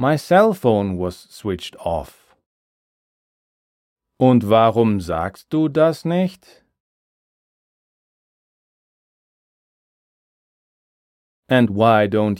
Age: 40-59